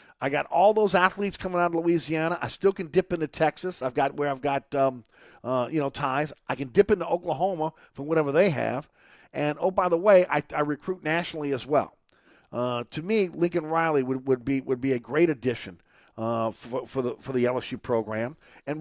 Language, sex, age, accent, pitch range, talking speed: English, male, 50-69, American, 140-185 Hz, 215 wpm